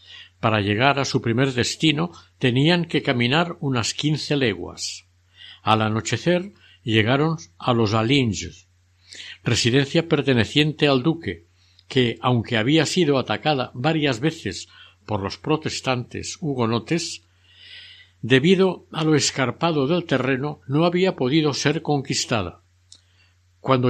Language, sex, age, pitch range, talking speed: Spanish, male, 60-79, 105-150 Hz, 115 wpm